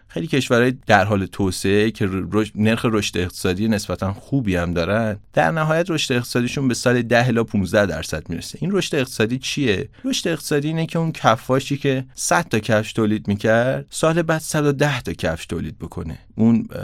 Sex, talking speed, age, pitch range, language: male, 165 wpm, 30-49, 90-130 Hz, Persian